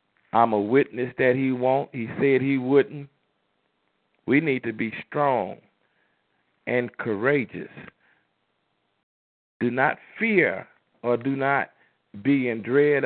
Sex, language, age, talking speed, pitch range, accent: male, English, 50-69, 120 wpm, 110-135 Hz, American